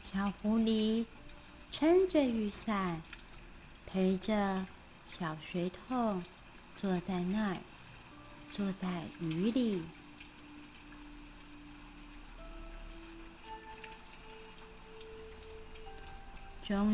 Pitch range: 190-275 Hz